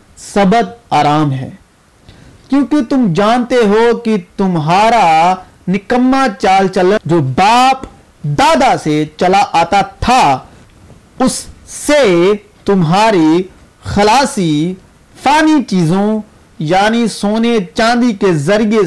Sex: male